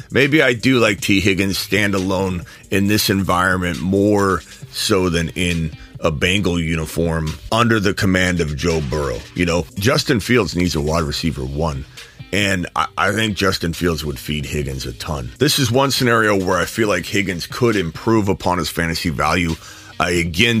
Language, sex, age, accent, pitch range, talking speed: English, male, 30-49, American, 80-105 Hz, 175 wpm